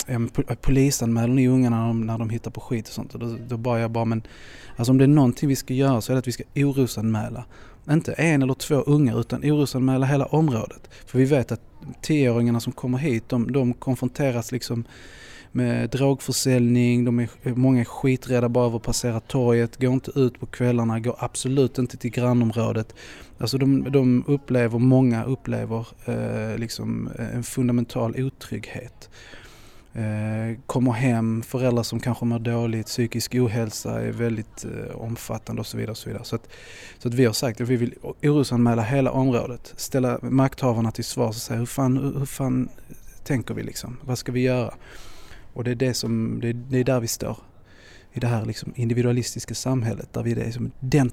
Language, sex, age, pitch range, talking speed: Swedish, male, 20-39, 115-130 Hz, 185 wpm